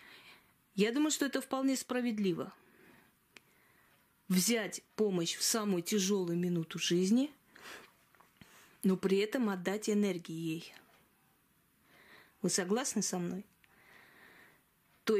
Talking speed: 95 wpm